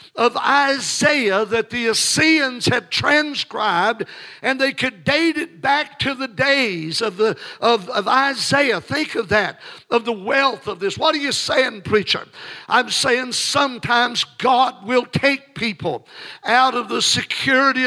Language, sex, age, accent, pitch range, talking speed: English, male, 60-79, American, 255-280 Hz, 150 wpm